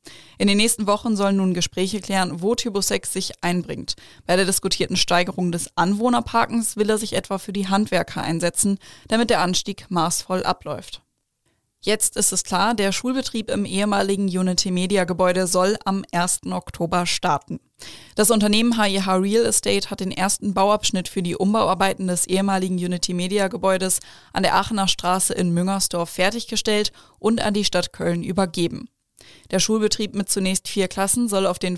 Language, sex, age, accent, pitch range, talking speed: German, female, 20-39, German, 180-205 Hz, 155 wpm